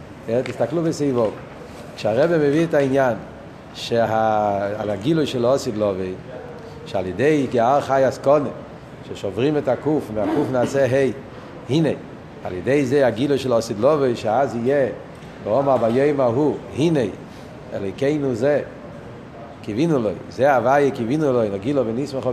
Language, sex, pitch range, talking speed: Hebrew, male, 130-170 Hz, 155 wpm